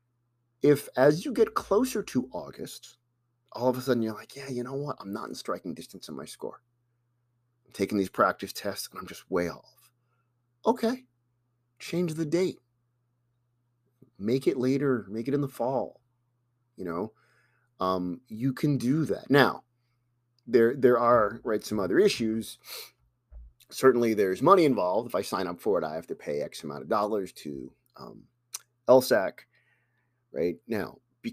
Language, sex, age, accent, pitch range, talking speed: English, male, 30-49, American, 105-130 Hz, 165 wpm